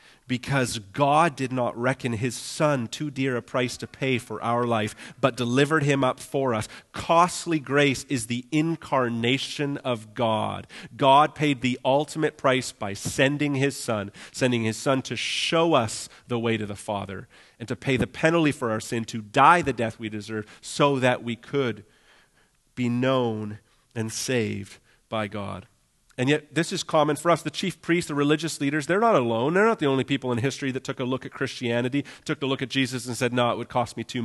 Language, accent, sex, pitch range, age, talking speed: English, American, male, 125-170 Hz, 40-59, 200 wpm